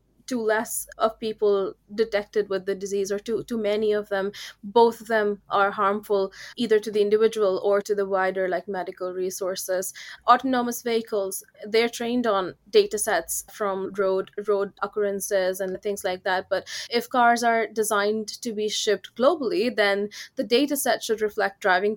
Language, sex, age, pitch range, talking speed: English, female, 20-39, 190-220 Hz, 165 wpm